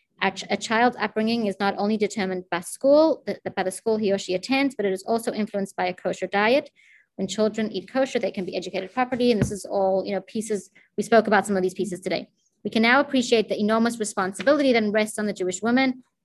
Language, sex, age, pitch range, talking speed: English, female, 30-49, 190-235 Hz, 230 wpm